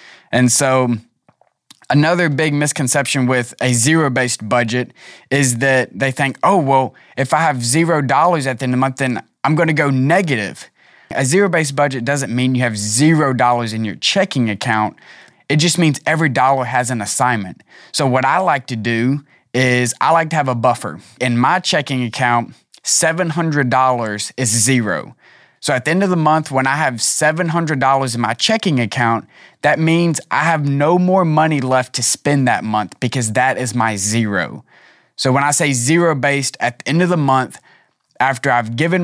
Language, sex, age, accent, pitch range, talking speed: English, male, 20-39, American, 120-155 Hz, 180 wpm